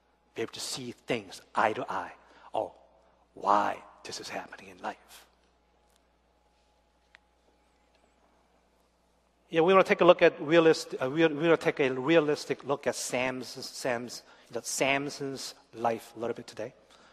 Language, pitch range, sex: Korean, 105-160 Hz, male